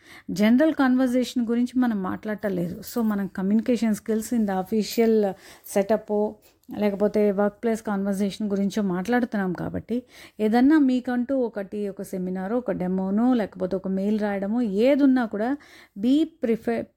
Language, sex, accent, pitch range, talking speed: Telugu, female, native, 205-250 Hz, 125 wpm